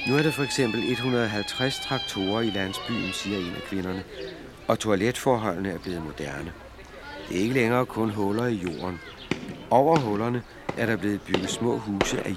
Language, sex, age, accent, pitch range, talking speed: Danish, male, 60-79, native, 95-120 Hz, 170 wpm